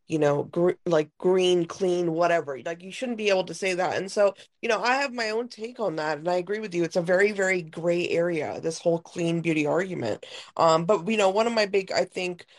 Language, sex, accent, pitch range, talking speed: English, female, American, 165-200 Hz, 245 wpm